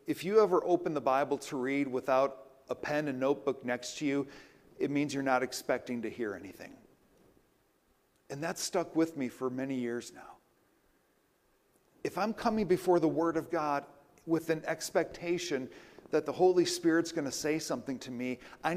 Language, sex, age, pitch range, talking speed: English, male, 50-69, 135-170 Hz, 175 wpm